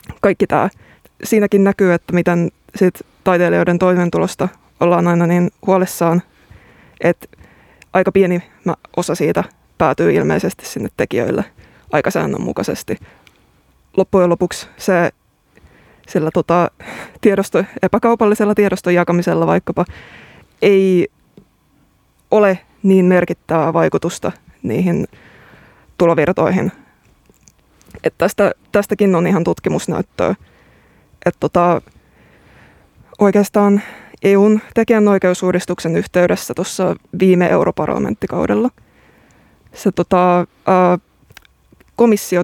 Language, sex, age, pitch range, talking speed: Finnish, female, 20-39, 175-200 Hz, 80 wpm